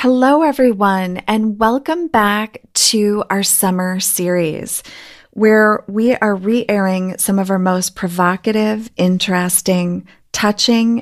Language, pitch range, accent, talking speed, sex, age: English, 175-205 Hz, American, 110 wpm, female, 30-49